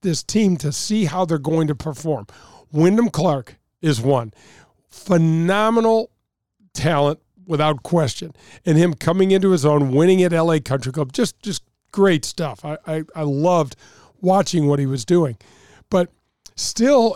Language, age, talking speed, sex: English, 50-69, 145 wpm, male